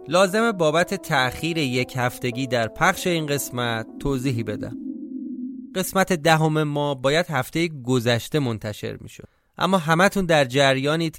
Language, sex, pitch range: Persian, male, 120-160 Hz